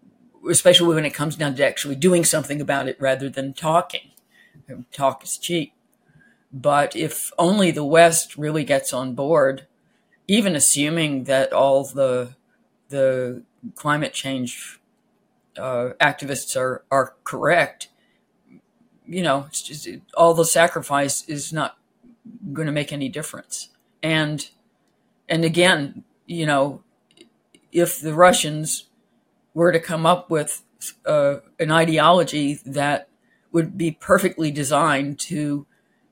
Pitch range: 145-175 Hz